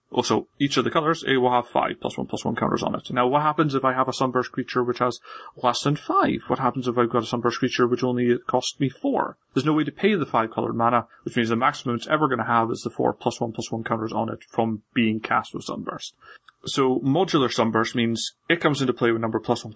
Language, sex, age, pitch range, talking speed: English, male, 30-49, 120-150 Hz, 275 wpm